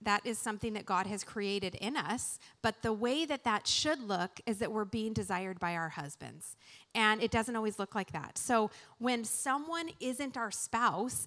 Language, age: English, 30-49